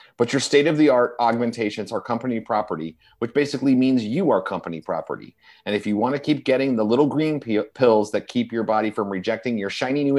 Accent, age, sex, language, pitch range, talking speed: American, 30-49, male, English, 115-175 Hz, 200 wpm